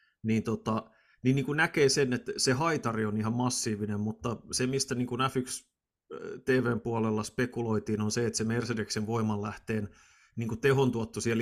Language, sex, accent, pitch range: Finnish, male, native, 105-130 Hz